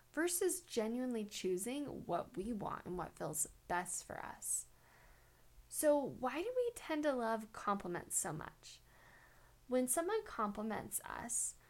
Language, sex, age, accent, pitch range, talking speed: English, female, 10-29, American, 185-250 Hz, 135 wpm